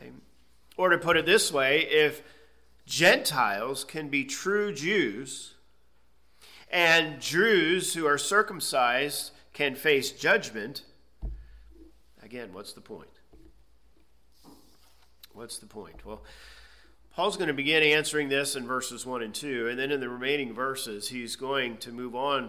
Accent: American